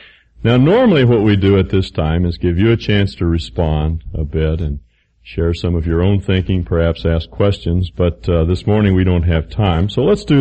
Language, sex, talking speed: English, male, 220 wpm